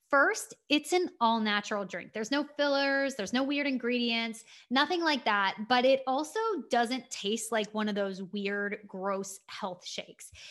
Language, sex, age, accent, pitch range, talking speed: English, female, 20-39, American, 225-290 Hz, 160 wpm